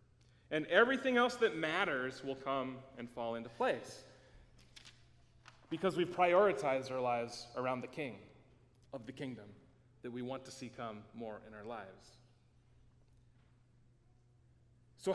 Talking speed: 130 wpm